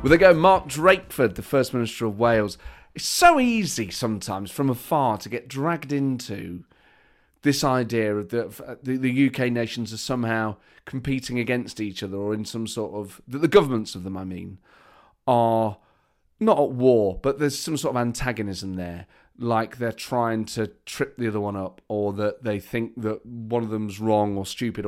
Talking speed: 190 wpm